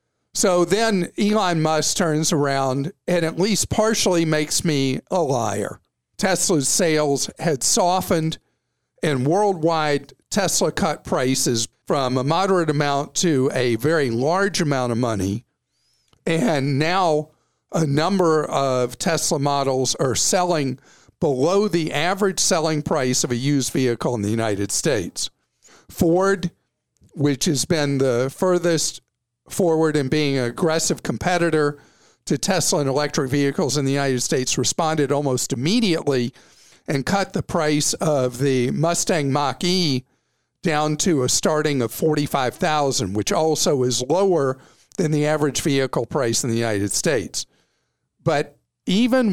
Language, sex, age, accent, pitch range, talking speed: English, male, 50-69, American, 130-170 Hz, 135 wpm